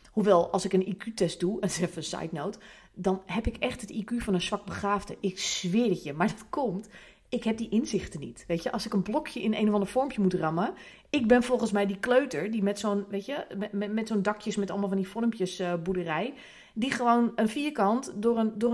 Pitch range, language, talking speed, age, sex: 190-235 Hz, Dutch, 245 wpm, 30-49, female